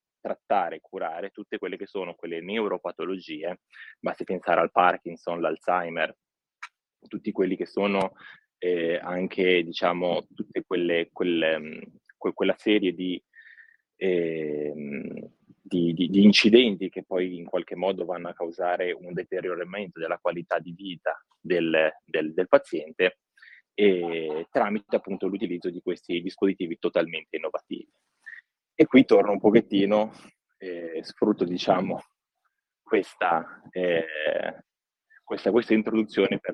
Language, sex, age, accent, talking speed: Italian, male, 20-39, native, 120 wpm